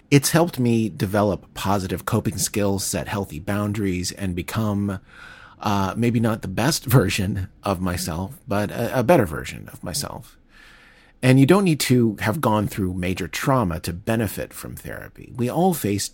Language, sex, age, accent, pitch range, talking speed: English, male, 40-59, American, 90-120 Hz, 165 wpm